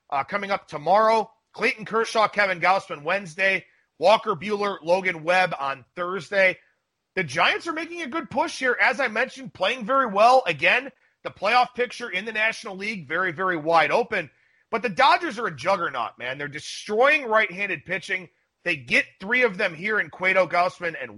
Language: English